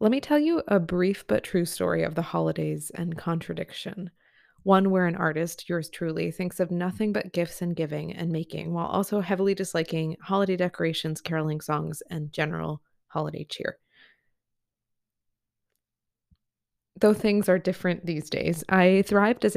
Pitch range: 160-185 Hz